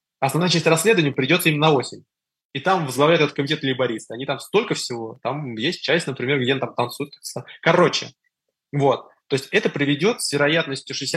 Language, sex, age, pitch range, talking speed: Russian, male, 20-39, 135-170 Hz, 165 wpm